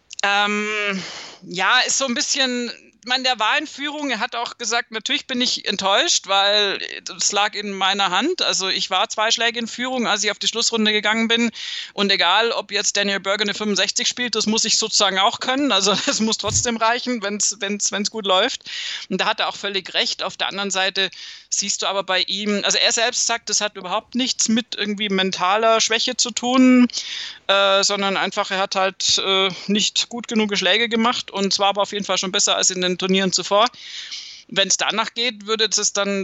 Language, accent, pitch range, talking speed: German, German, 195-225 Hz, 205 wpm